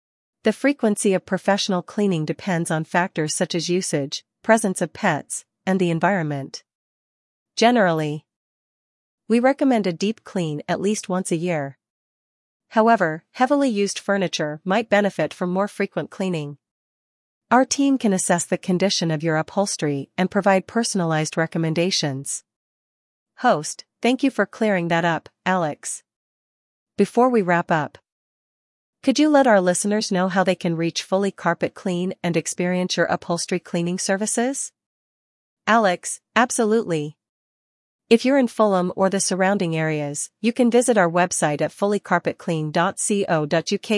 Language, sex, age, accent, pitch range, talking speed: English, female, 40-59, American, 160-205 Hz, 135 wpm